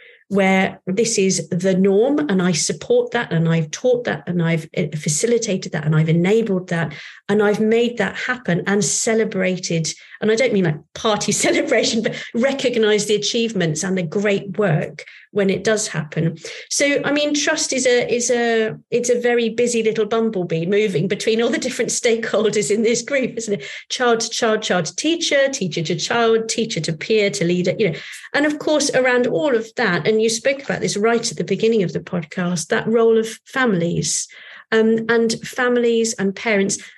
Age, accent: 40-59, British